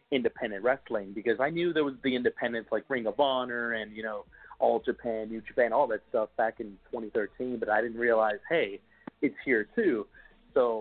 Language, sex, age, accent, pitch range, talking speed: English, male, 30-49, American, 110-135 Hz, 195 wpm